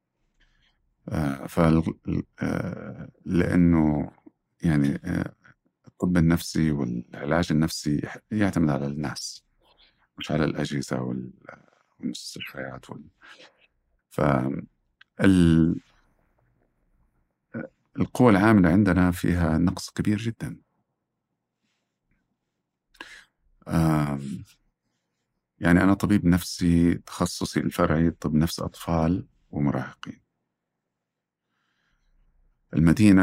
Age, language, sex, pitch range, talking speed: 50-69, Arabic, male, 70-90 Hz, 65 wpm